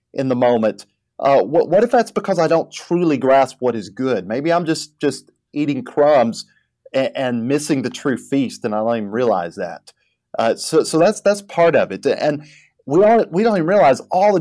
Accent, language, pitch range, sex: American, English, 115-155 Hz, male